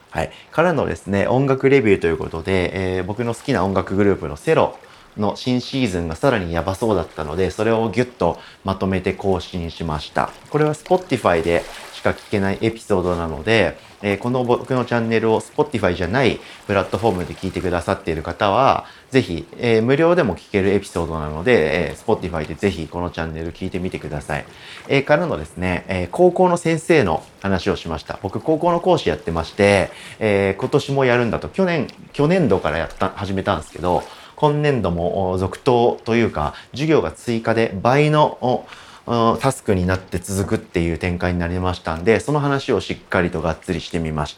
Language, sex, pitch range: Japanese, male, 85-120 Hz